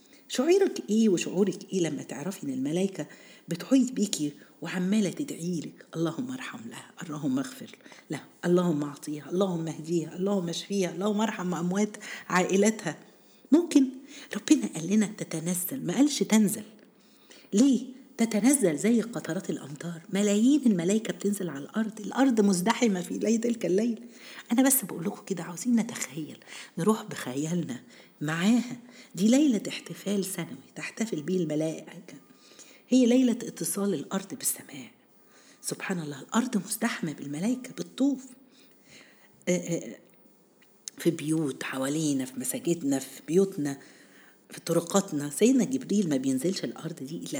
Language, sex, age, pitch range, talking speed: Arabic, female, 50-69, 170-240 Hz, 120 wpm